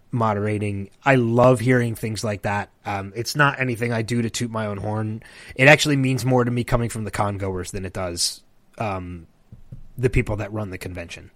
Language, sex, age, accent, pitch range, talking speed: English, male, 30-49, American, 100-125 Hz, 205 wpm